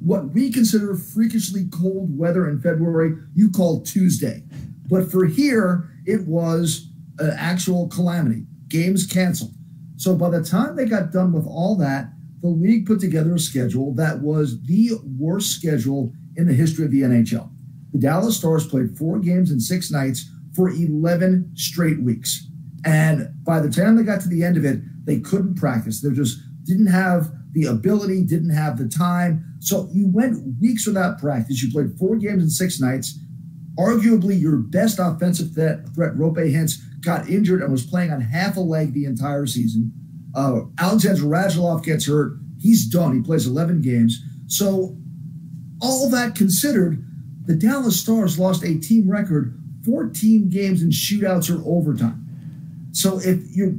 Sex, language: male, English